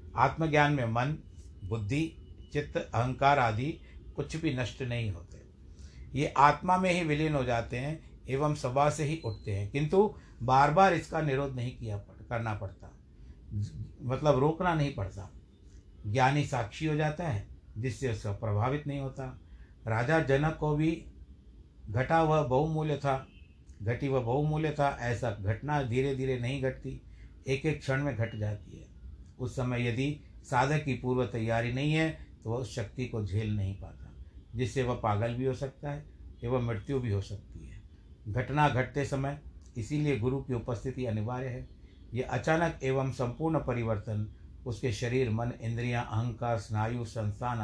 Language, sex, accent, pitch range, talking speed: Hindi, male, native, 105-140 Hz, 155 wpm